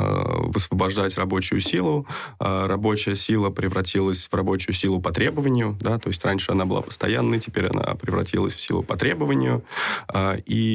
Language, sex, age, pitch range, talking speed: Russian, male, 20-39, 95-110 Hz, 145 wpm